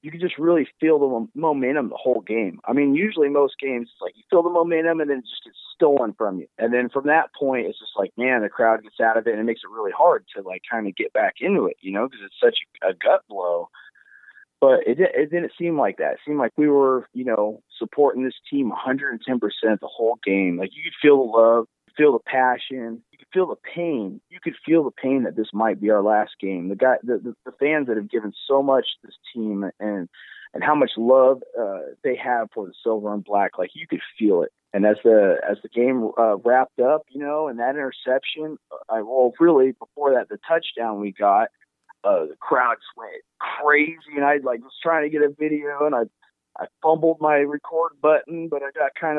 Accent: American